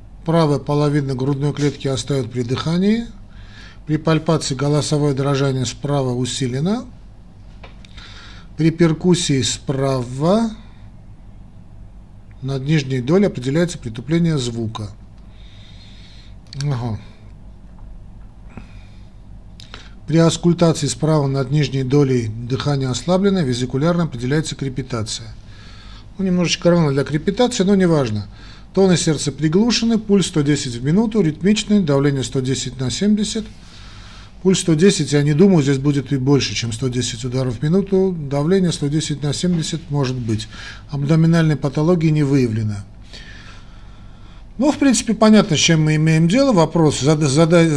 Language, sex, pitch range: Russian, male, 110-160 Hz